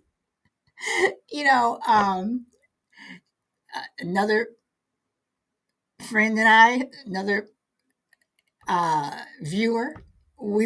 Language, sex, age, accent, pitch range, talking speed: English, female, 50-69, American, 205-290 Hz, 60 wpm